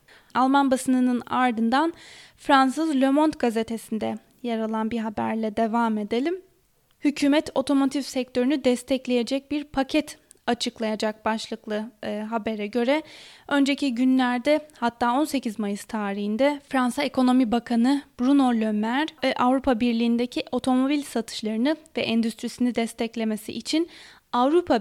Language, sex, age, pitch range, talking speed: Turkish, female, 10-29, 225-275 Hz, 105 wpm